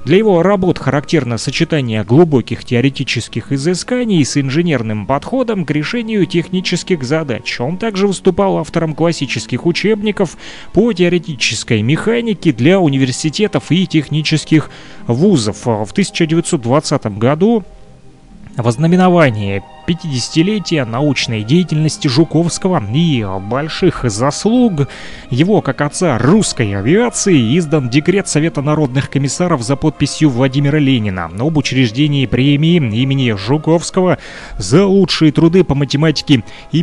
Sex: male